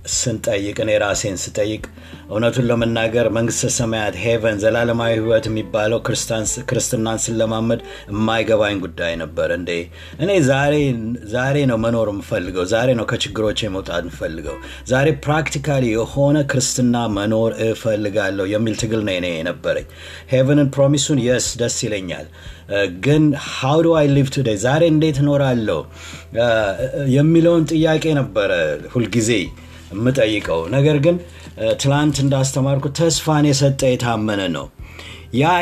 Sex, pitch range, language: male, 110-140 Hz, Amharic